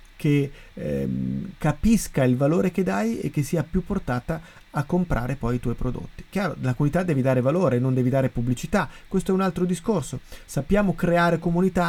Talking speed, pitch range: 180 wpm, 135-185 Hz